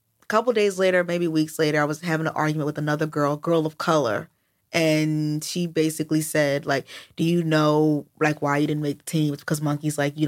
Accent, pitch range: American, 155-190 Hz